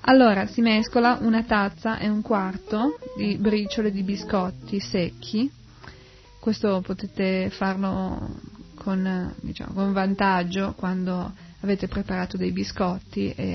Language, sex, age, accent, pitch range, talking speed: Italian, female, 20-39, native, 185-220 Hz, 110 wpm